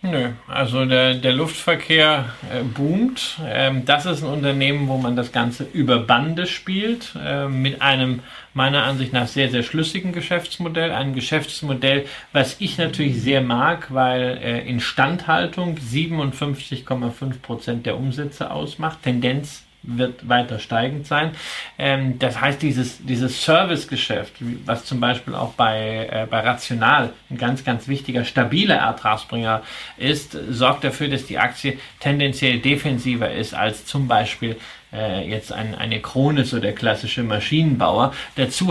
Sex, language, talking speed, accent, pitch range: male, German, 145 wpm, German, 125-150 Hz